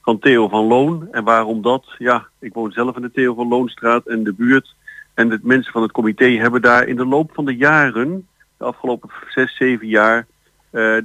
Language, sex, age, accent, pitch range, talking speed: Dutch, male, 50-69, Dutch, 105-130 Hz, 210 wpm